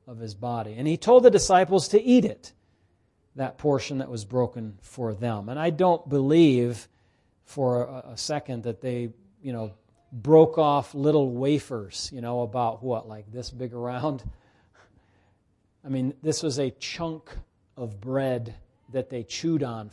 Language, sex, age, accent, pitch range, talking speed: English, male, 40-59, American, 110-140 Hz, 160 wpm